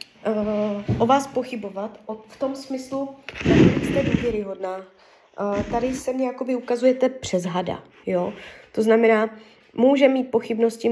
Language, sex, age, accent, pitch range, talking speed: Czech, female, 20-39, native, 220-260 Hz, 135 wpm